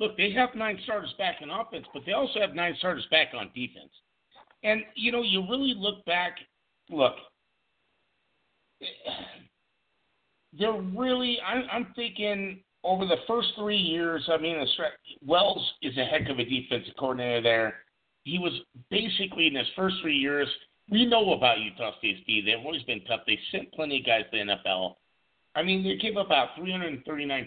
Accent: American